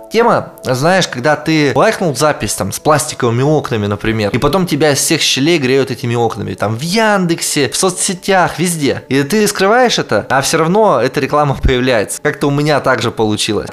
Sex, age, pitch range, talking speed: male, 20-39, 125-165 Hz, 180 wpm